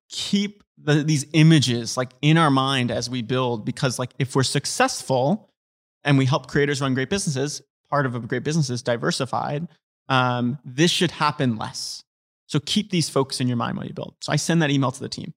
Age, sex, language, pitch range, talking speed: 30-49, male, English, 130-155 Hz, 205 wpm